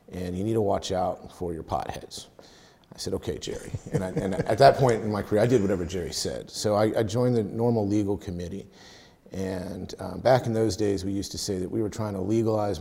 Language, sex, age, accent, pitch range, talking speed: English, male, 40-59, American, 95-115 Hz, 240 wpm